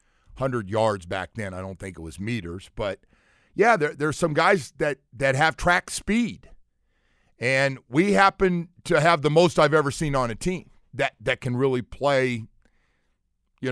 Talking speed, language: 170 wpm, English